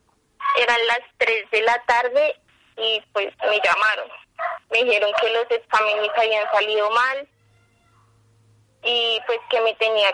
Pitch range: 215-260 Hz